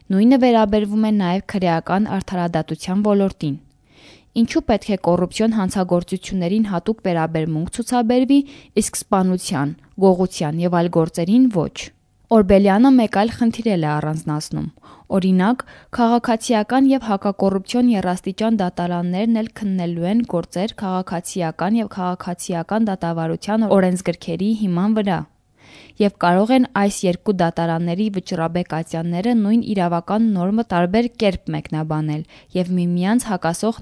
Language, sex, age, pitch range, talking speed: English, female, 10-29, 175-220 Hz, 100 wpm